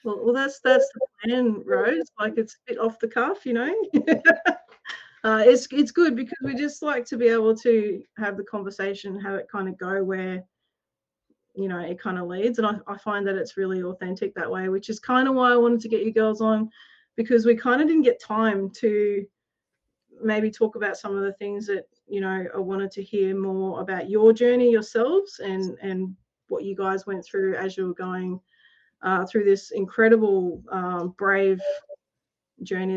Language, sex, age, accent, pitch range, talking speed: English, female, 30-49, Australian, 195-230 Hz, 200 wpm